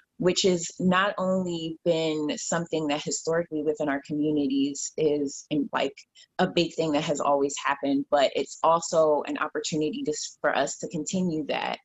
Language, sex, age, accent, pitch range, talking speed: English, female, 20-39, American, 155-195 Hz, 160 wpm